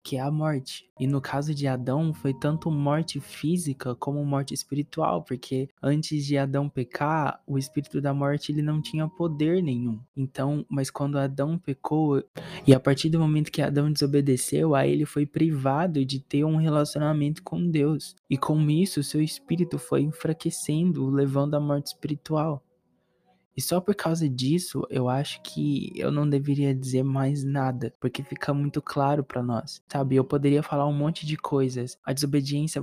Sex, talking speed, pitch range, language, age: male, 170 wpm, 140-160 Hz, Portuguese, 20-39